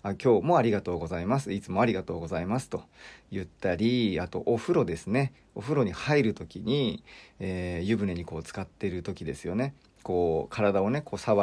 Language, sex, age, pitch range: Japanese, male, 40-59, 95-140 Hz